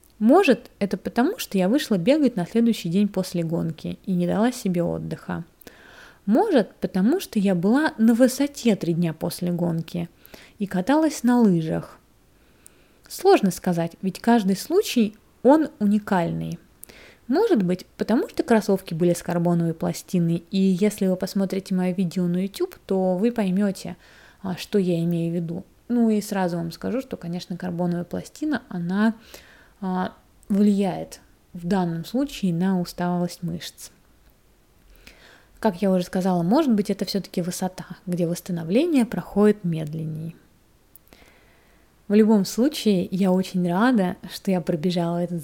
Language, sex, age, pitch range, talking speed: Russian, female, 20-39, 175-220 Hz, 135 wpm